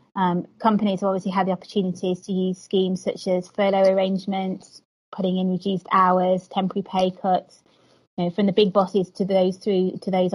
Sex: female